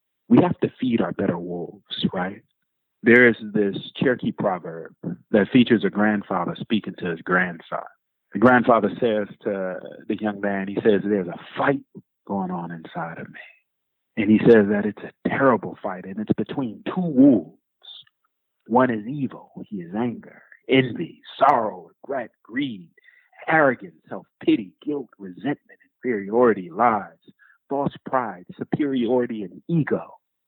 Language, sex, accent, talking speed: English, male, American, 140 wpm